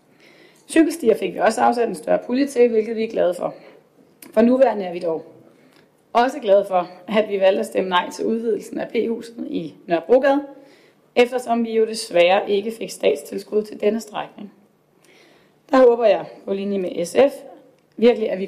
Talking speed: 175 wpm